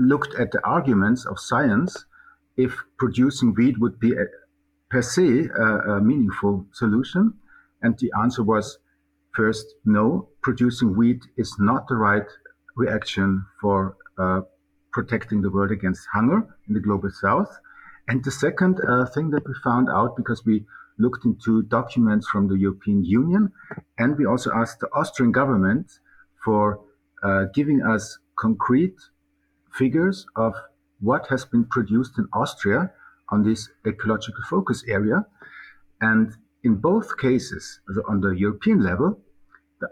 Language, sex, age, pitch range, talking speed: English, male, 50-69, 100-130 Hz, 140 wpm